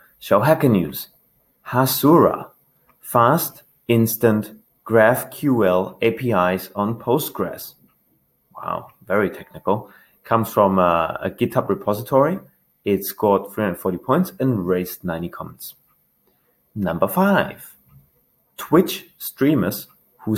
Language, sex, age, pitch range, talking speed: English, male, 30-49, 95-135 Hz, 95 wpm